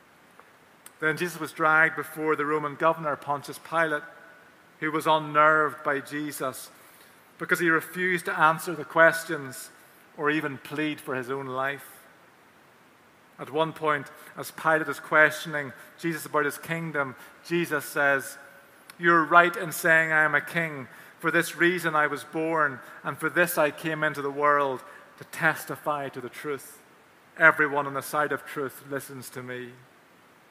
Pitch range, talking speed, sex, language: 135-160 Hz, 155 wpm, male, English